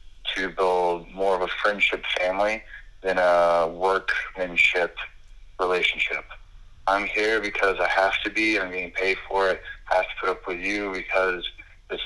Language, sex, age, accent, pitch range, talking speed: English, male, 30-49, American, 90-95 Hz, 160 wpm